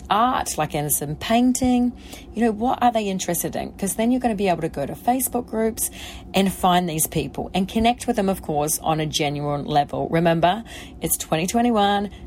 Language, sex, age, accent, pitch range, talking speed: English, female, 30-49, Australian, 150-205 Hz, 200 wpm